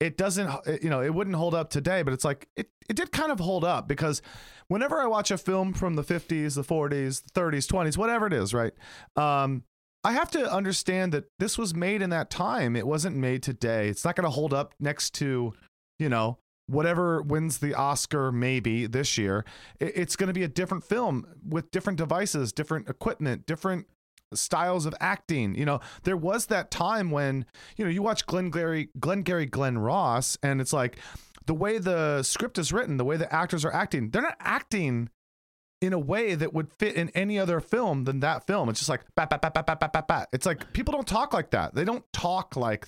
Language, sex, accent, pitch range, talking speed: English, male, American, 135-185 Hz, 205 wpm